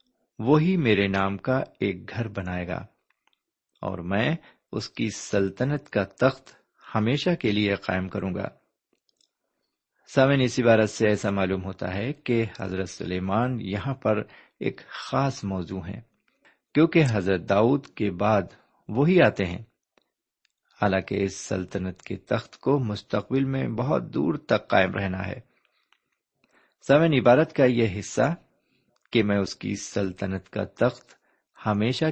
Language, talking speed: Urdu, 140 wpm